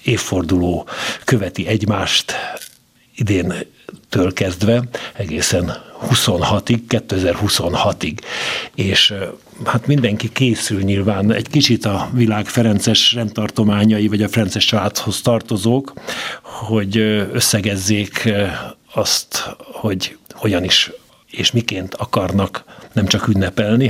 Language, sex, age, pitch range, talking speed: Hungarian, male, 60-79, 100-115 Hz, 95 wpm